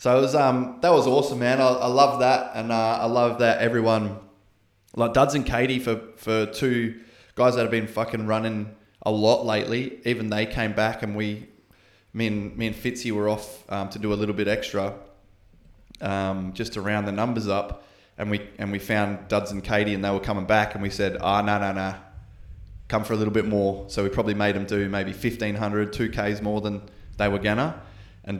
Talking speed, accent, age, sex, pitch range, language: 220 wpm, Australian, 20-39, male, 100-110 Hz, English